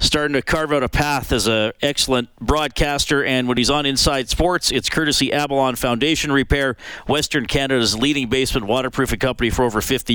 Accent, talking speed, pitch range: American, 175 wpm, 115-150 Hz